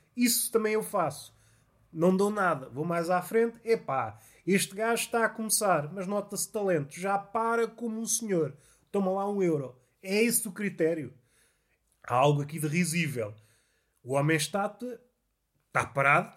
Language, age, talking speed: Portuguese, 30-49, 160 wpm